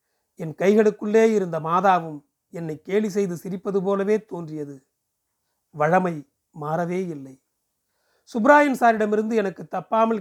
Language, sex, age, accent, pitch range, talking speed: Tamil, male, 40-59, native, 155-210 Hz, 100 wpm